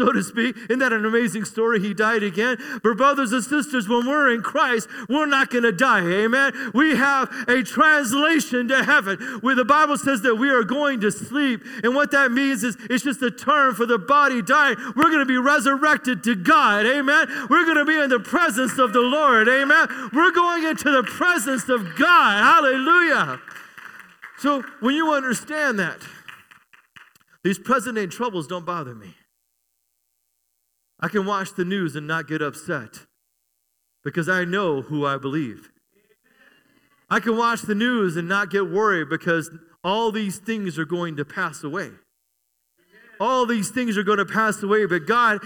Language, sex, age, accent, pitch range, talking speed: English, male, 40-59, American, 205-275 Hz, 180 wpm